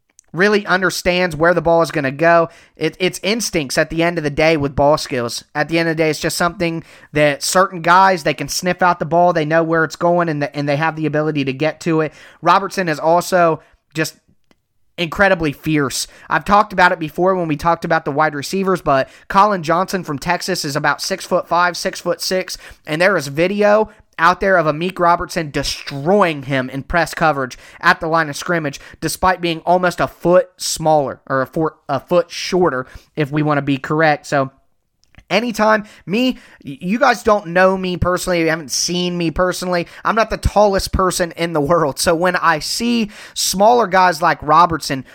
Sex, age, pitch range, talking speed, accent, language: male, 20-39, 155-180 Hz, 200 wpm, American, English